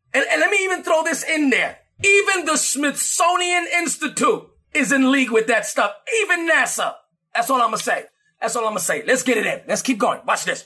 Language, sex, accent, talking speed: English, male, American, 235 wpm